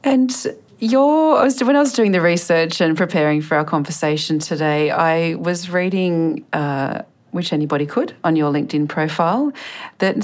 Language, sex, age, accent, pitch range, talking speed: English, female, 40-59, Australian, 145-180 Hz, 145 wpm